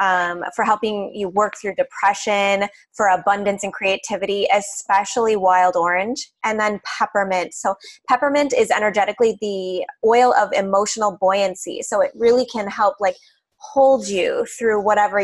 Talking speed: 140 wpm